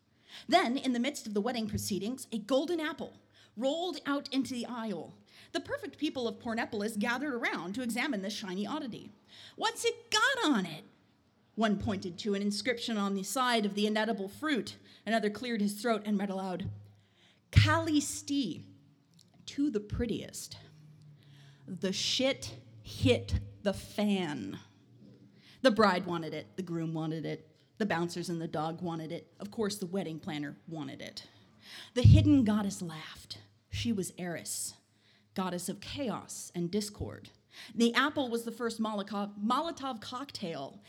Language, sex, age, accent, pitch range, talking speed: English, female, 30-49, American, 165-245 Hz, 150 wpm